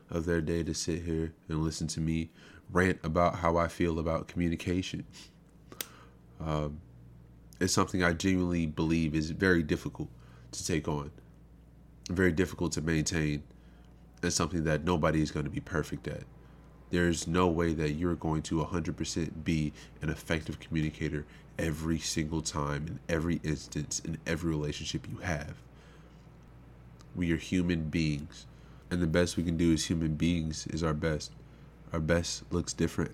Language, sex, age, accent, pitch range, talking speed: English, male, 30-49, American, 75-85 Hz, 160 wpm